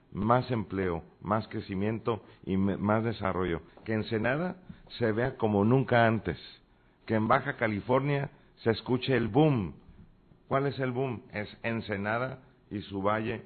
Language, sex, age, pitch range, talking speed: Spanish, male, 50-69, 95-115 Hz, 140 wpm